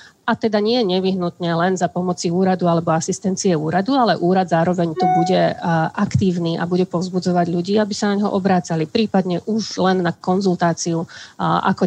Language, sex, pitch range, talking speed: Slovak, female, 170-185 Hz, 165 wpm